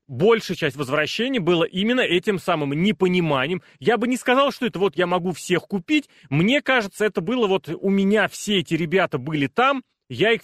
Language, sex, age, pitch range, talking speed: Russian, male, 30-49, 140-210 Hz, 190 wpm